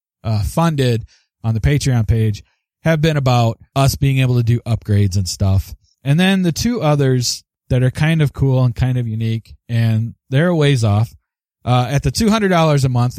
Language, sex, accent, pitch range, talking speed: English, male, American, 110-145 Hz, 190 wpm